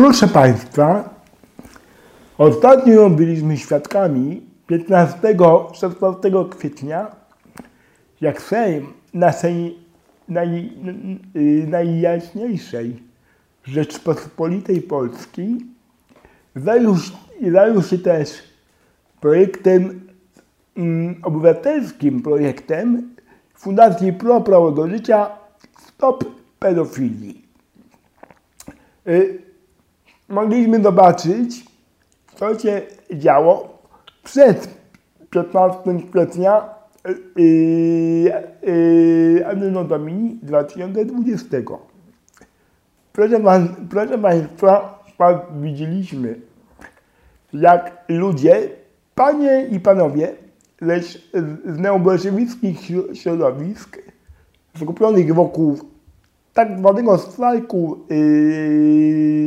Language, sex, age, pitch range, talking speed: Polish, male, 60-79, 165-210 Hz, 60 wpm